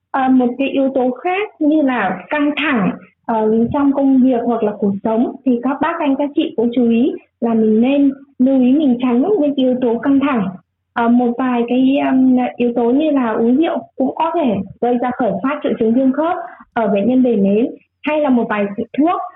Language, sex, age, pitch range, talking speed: Vietnamese, female, 20-39, 240-305 Hz, 220 wpm